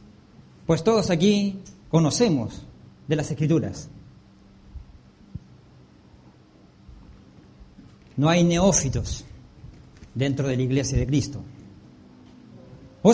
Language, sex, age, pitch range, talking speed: English, male, 50-69, 150-205 Hz, 80 wpm